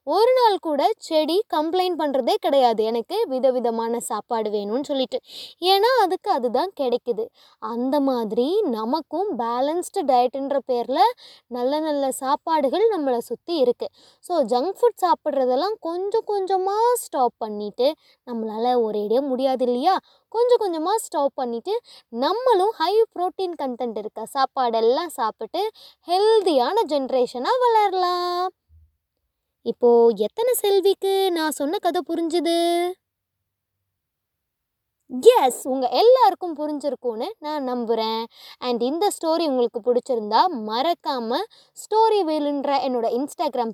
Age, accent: 20-39, native